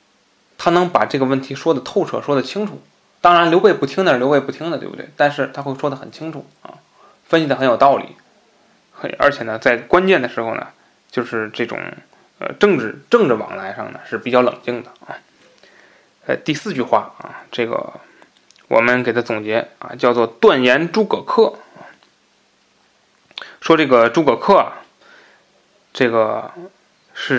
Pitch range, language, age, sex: 120-160 Hz, Chinese, 20-39, male